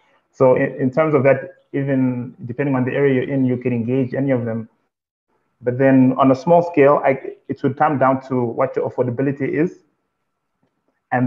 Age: 20-39